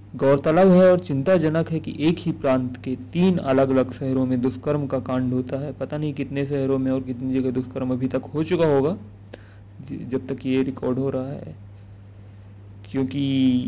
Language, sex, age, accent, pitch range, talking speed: Hindi, male, 40-59, native, 130-150 Hz, 185 wpm